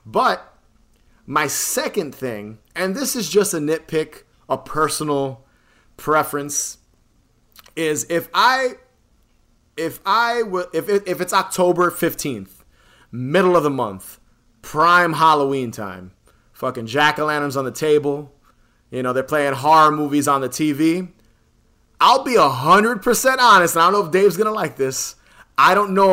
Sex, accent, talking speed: male, American, 140 wpm